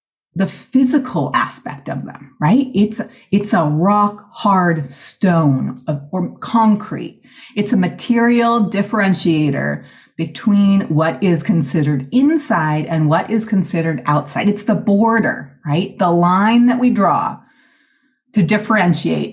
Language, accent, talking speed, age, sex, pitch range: English, American, 125 wpm, 30-49, female, 160-220 Hz